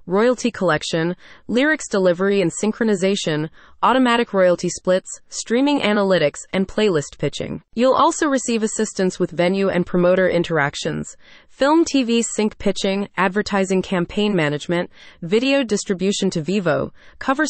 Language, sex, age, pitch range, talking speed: English, female, 30-49, 170-225 Hz, 120 wpm